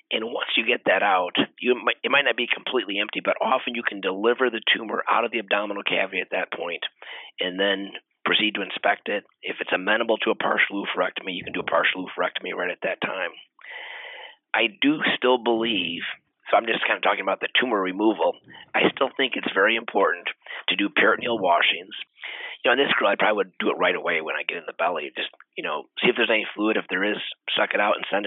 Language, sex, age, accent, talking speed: English, male, 30-49, American, 230 wpm